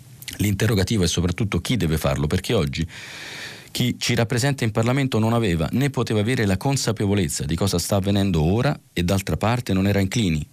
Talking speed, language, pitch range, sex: 175 wpm, Italian, 95-120 Hz, male